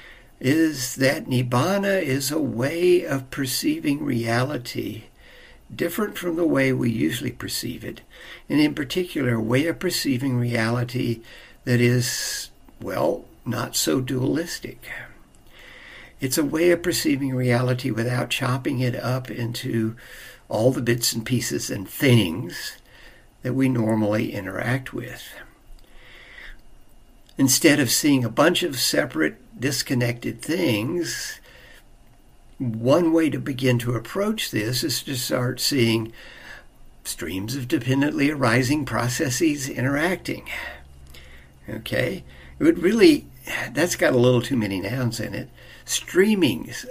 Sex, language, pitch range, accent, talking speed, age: male, English, 120-150 Hz, American, 120 wpm, 60-79